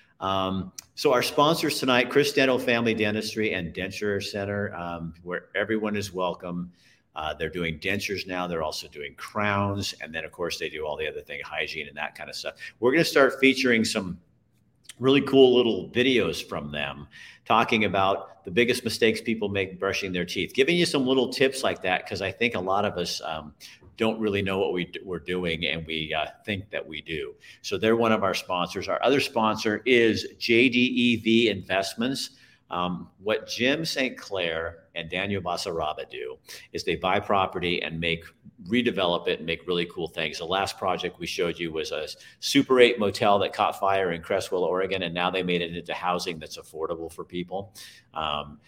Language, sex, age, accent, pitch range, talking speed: English, male, 50-69, American, 90-130 Hz, 190 wpm